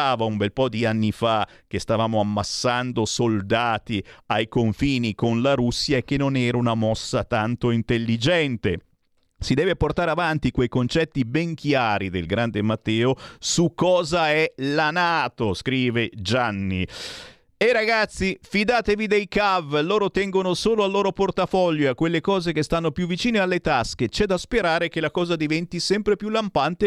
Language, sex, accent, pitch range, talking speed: Italian, male, native, 115-190 Hz, 165 wpm